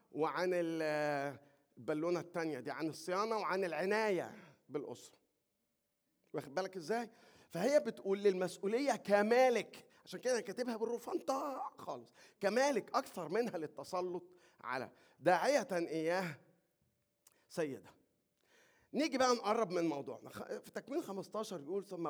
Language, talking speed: Arabic, 105 wpm